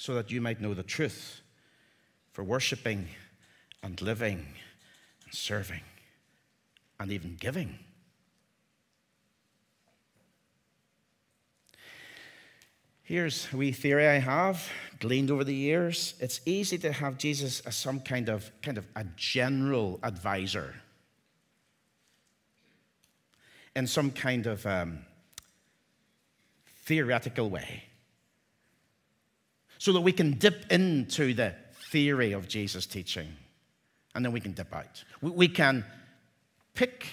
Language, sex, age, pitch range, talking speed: English, male, 50-69, 105-135 Hz, 105 wpm